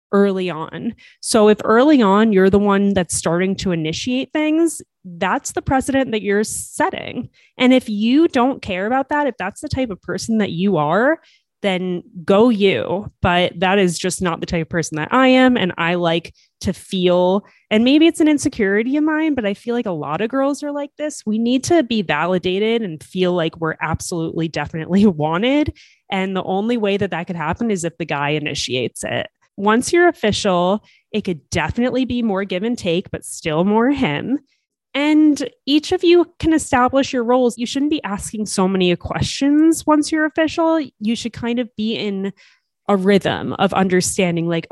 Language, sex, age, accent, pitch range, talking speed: English, female, 20-39, American, 180-260 Hz, 195 wpm